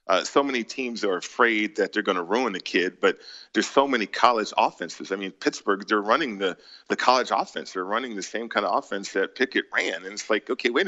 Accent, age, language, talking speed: American, 40-59, English, 235 wpm